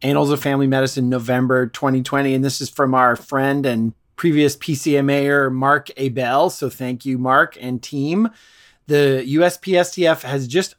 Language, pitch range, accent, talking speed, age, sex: English, 130-150 Hz, American, 150 wpm, 30-49, male